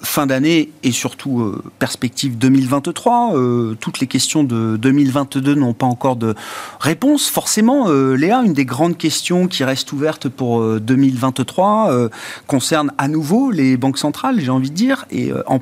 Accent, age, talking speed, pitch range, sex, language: French, 40-59, 175 wpm, 115-150 Hz, male, French